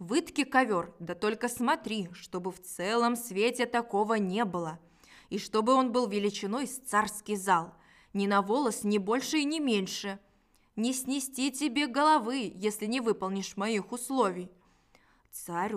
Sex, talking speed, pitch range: female, 145 wpm, 190-240 Hz